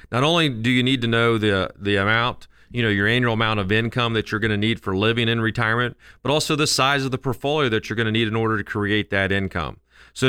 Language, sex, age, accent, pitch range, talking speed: English, male, 40-59, American, 110-135 Hz, 260 wpm